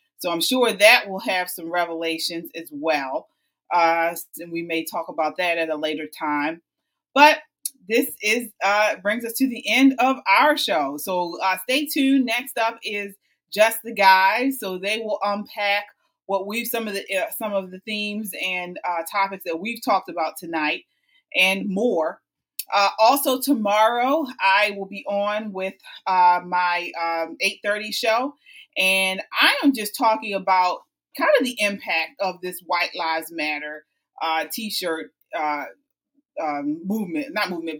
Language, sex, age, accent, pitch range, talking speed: English, female, 30-49, American, 180-260 Hz, 160 wpm